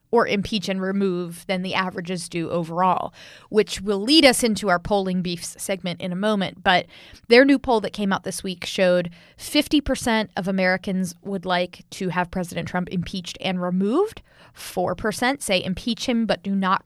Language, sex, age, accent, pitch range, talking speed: English, female, 20-39, American, 185-230 Hz, 180 wpm